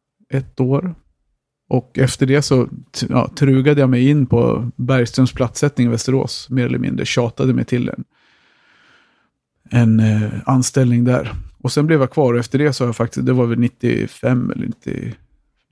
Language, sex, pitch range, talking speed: Swedish, male, 120-135 Hz, 170 wpm